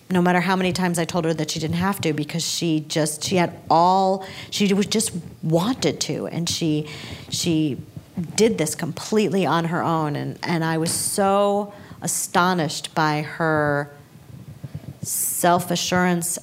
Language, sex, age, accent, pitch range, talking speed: English, female, 40-59, American, 150-190 Hz, 150 wpm